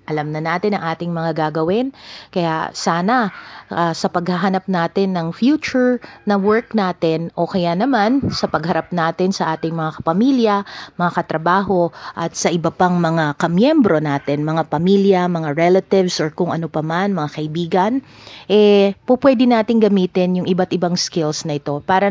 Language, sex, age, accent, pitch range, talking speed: English, female, 40-59, Filipino, 160-205 Hz, 155 wpm